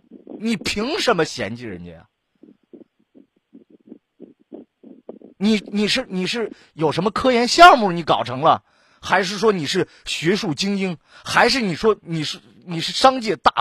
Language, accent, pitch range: Chinese, native, 135-220 Hz